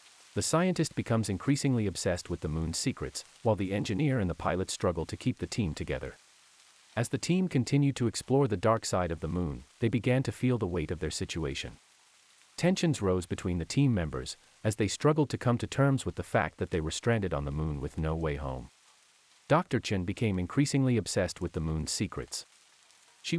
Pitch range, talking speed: 80-130 Hz, 205 wpm